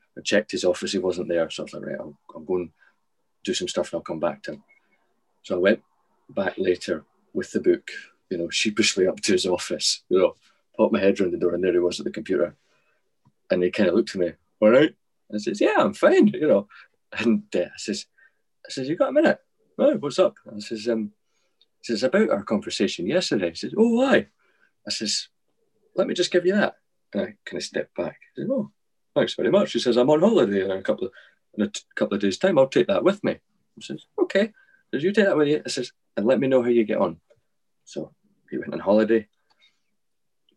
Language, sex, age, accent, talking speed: English, male, 30-49, British, 245 wpm